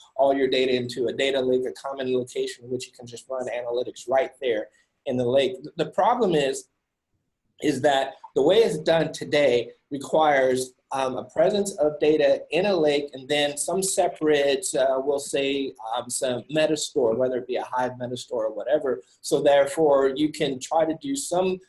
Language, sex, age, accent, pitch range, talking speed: English, male, 30-49, American, 135-190 Hz, 185 wpm